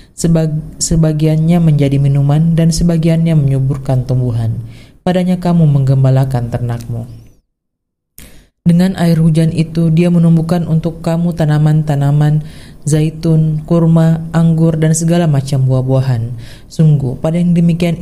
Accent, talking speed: native, 105 wpm